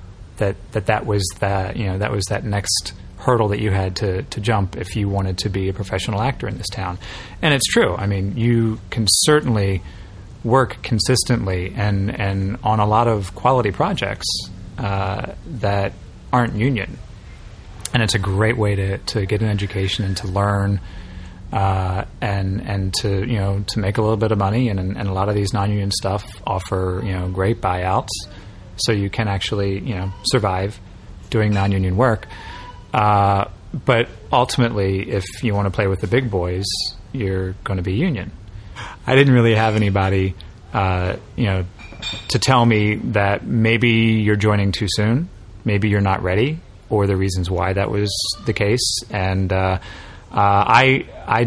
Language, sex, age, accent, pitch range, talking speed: English, male, 30-49, American, 95-110 Hz, 175 wpm